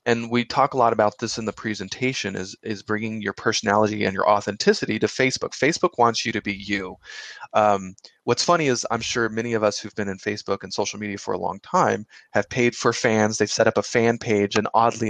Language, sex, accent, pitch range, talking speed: English, male, American, 105-125 Hz, 230 wpm